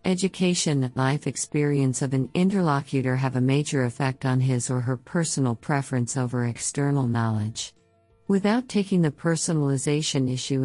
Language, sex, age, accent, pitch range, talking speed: English, female, 50-69, American, 130-150 Hz, 140 wpm